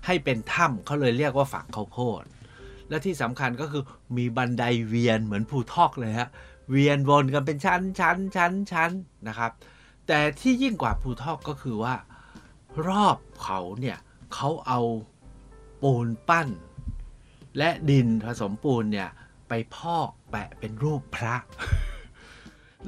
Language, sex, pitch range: Thai, male, 110-140 Hz